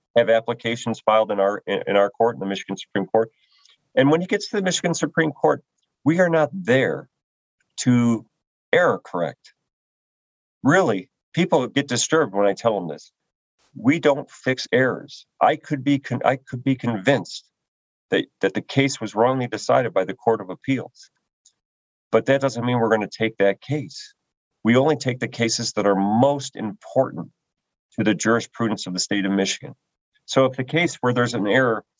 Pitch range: 110-135 Hz